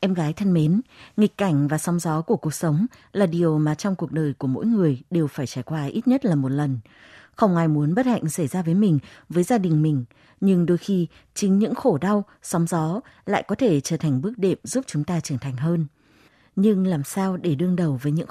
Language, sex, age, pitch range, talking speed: Vietnamese, female, 20-39, 150-200 Hz, 240 wpm